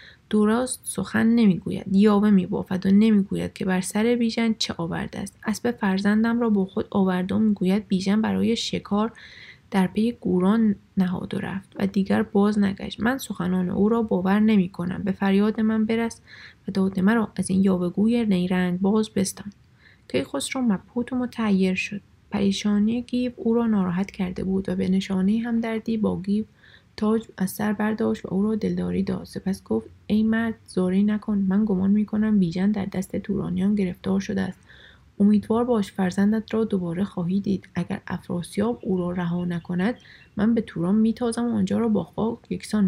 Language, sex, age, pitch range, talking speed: Persian, female, 20-39, 190-220 Hz, 170 wpm